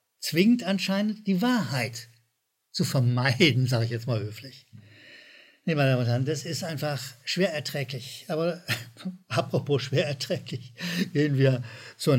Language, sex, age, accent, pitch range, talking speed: German, male, 60-79, German, 125-195 Hz, 145 wpm